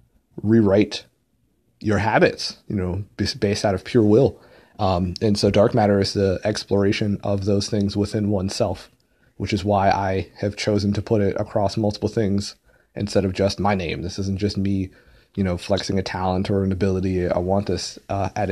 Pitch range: 100-110 Hz